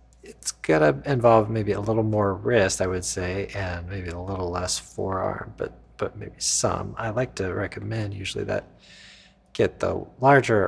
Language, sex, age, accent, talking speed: English, male, 40-59, American, 170 wpm